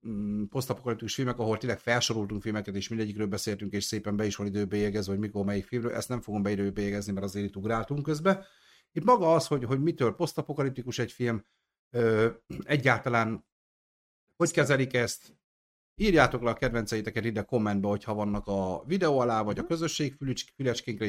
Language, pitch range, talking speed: Hungarian, 100-130 Hz, 160 wpm